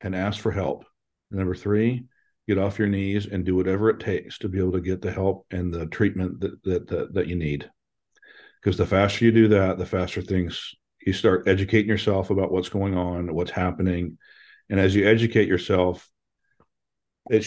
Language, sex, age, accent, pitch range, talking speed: English, male, 40-59, American, 90-105 Hz, 195 wpm